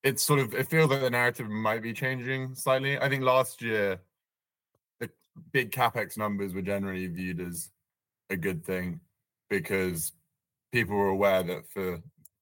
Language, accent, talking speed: English, British, 160 wpm